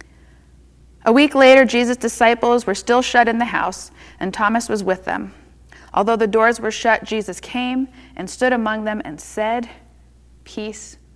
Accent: American